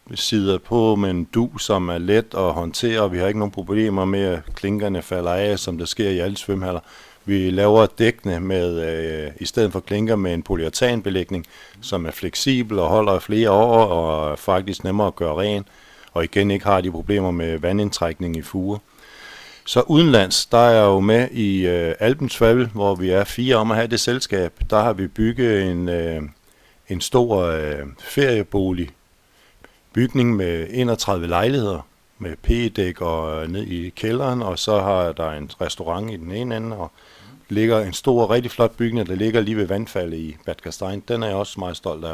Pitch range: 85-110 Hz